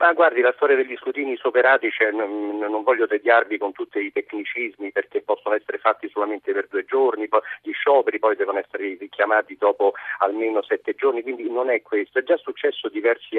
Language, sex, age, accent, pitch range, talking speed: Italian, male, 50-69, native, 330-435 Hz, 195 wpm